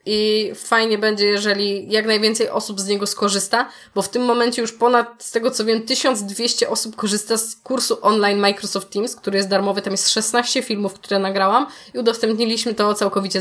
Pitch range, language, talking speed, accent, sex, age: 195-225 Hz, Polish, 185 wpm, native, female, 20-39